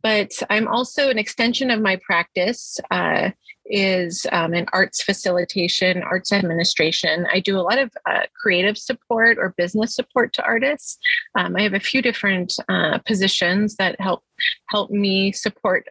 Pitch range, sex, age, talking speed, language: 185-230 Hz, female, 30-49, 160 wpm, English